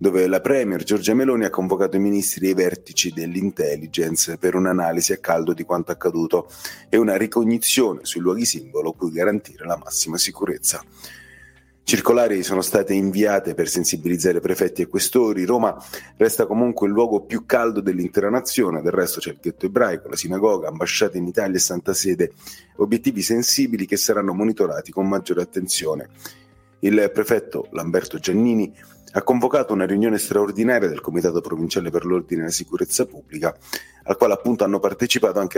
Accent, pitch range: native, 90-115 Hz